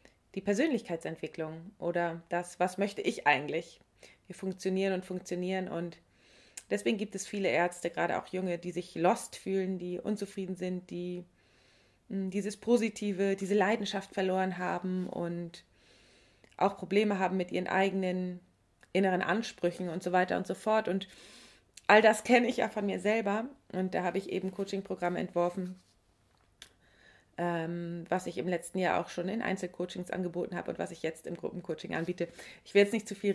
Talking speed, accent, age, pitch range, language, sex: 160 wpm, German, 30-49, 175-200 Hz, German, female